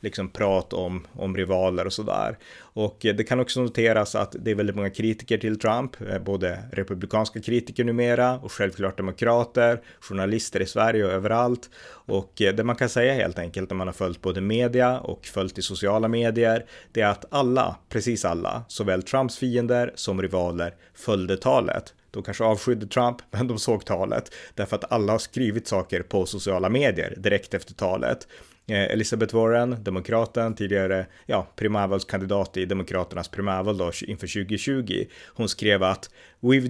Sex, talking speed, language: male, 160 wpm, Swedish